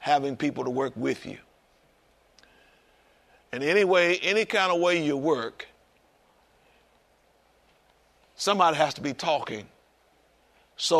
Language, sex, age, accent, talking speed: English, male, 60-79, American, 115 wpm